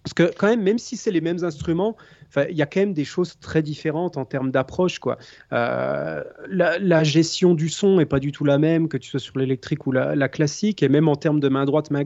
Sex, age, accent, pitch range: male, 30-49, French, 140-180 Hz